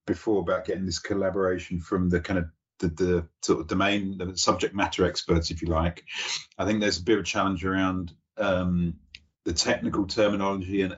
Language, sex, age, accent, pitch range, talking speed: English, male, 30-49, British, 85-95 Hz, 190 wpm